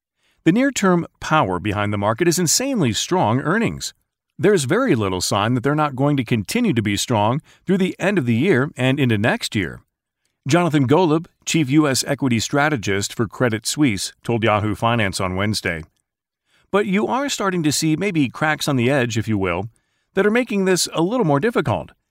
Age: 40-59